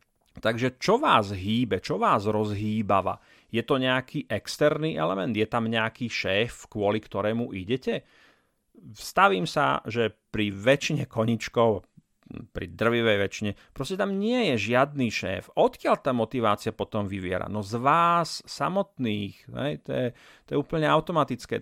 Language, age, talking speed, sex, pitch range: Slovak, 40-59, 135 wpm, male, 110-145 Hz